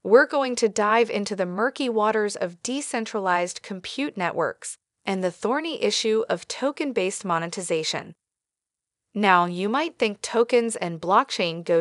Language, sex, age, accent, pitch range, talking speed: English, female, 30-49, American, 180-250 Hz, 135 wpm